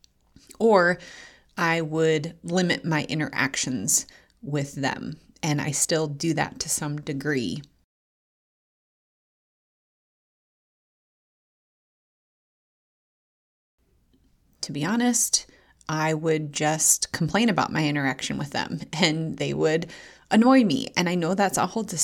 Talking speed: 110 wpm